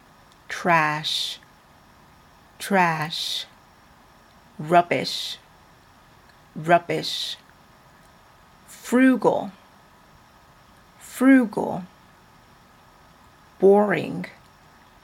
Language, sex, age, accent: English, female, 40-59, American